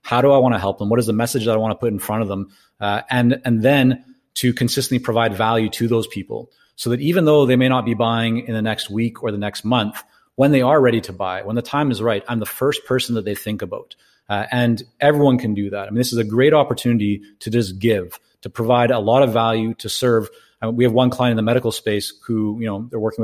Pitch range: 110-125 Hz